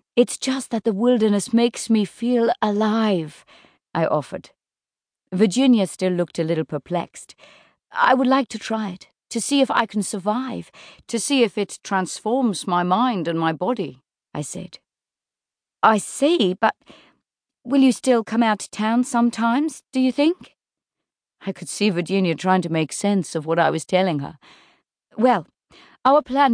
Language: English